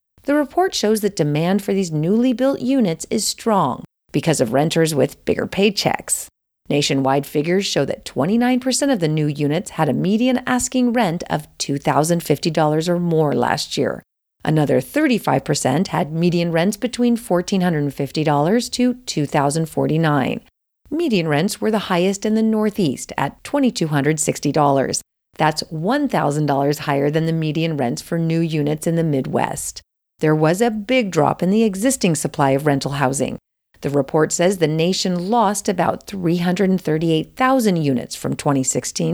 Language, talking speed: English, 145 wpm